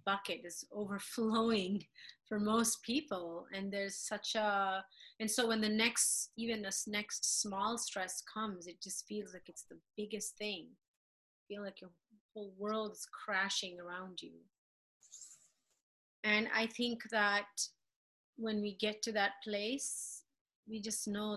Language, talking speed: English, 145 wpm